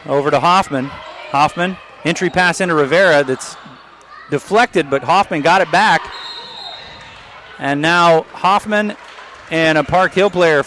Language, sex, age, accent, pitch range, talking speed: English, male, 30-49, American, 145-185 Hz, 130 wpm